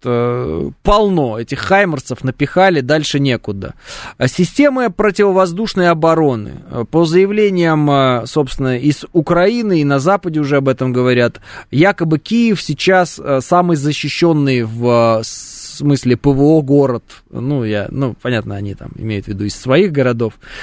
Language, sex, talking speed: Russian, male, 120 wpm